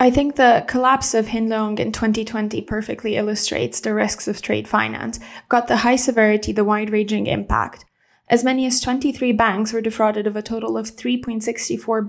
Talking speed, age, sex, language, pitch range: 170 wpm, 20-39, female, English, 215-245 Hz